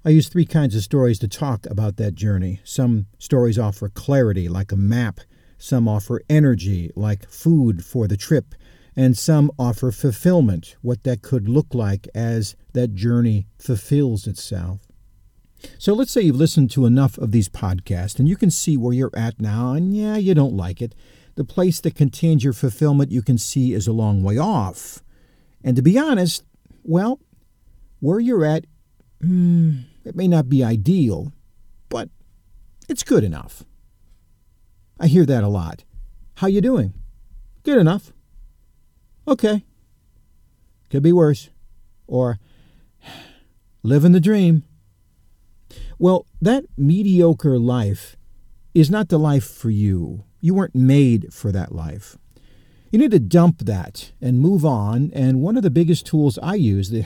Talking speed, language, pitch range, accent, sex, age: 155 wpm, English, 100-155 Hz, American, male, 50-69